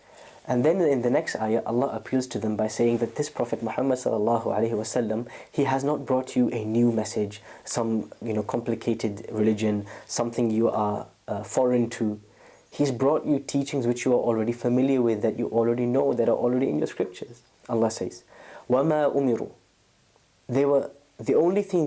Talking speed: 175 wpm